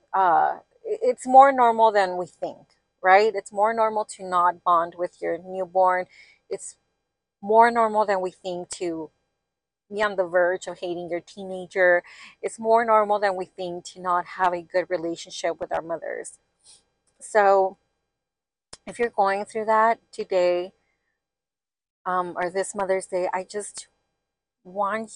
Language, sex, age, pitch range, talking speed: English, female, 30-49, 180-220 Hz, 150 wpm